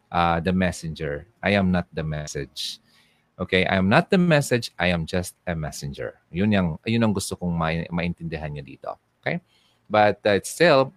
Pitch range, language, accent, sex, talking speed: 85-130 Hz, Filipino, native, male, 180 wpm